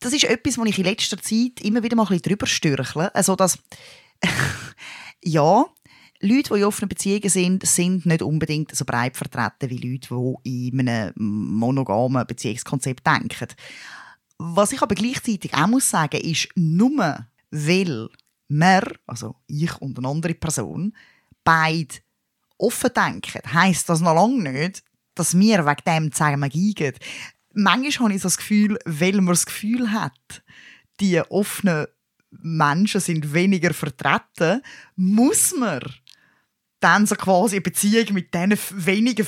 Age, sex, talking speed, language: 20-39, female, 145 wpm, German